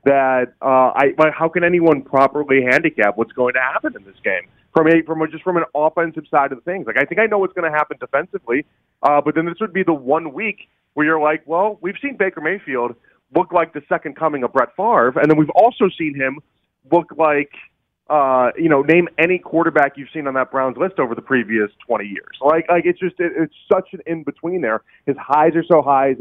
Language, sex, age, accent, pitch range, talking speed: English, male, 30-49, American, 135-180 Hz, 230 wpm